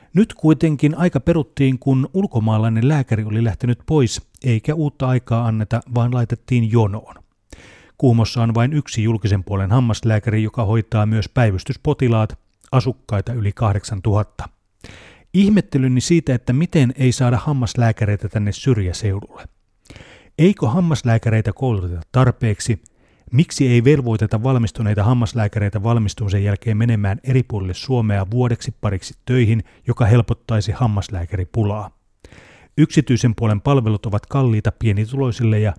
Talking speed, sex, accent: 115 wpm, male, native